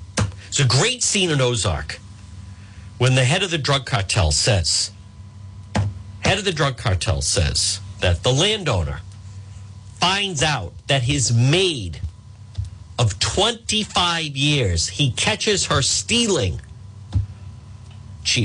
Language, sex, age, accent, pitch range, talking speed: English, male, 50-69, American, 100-140 Hz, 115 wpm